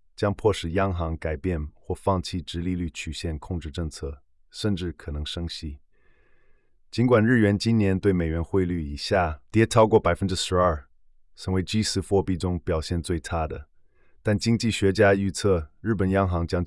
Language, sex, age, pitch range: Chinese, male, 20-39, 80-100 Hz